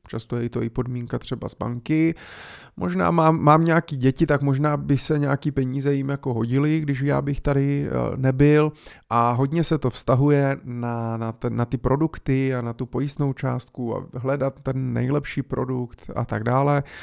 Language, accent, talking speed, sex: Czech, native, 170 wpm, male